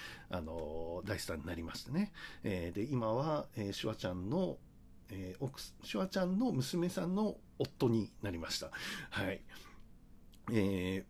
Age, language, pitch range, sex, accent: 60-79, Japanese, 100-165 Hz, male, native